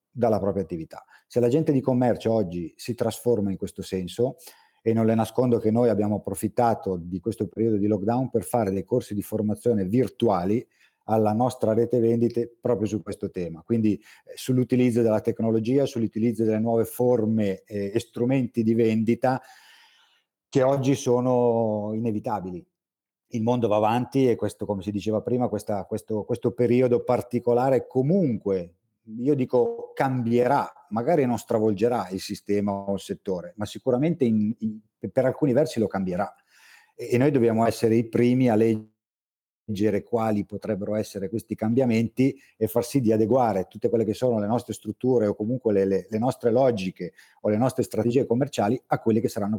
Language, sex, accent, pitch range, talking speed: Italian, male, native, 105-125 Hz, 165 wpm